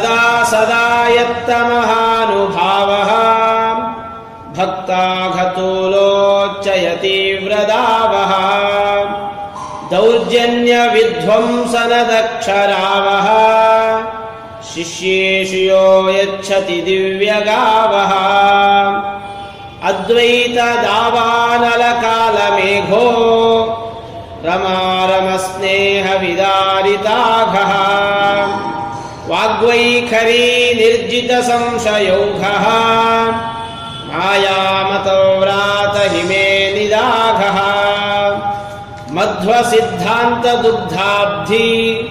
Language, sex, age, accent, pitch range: Kannada, male, 40-59, native, 195-230 Hz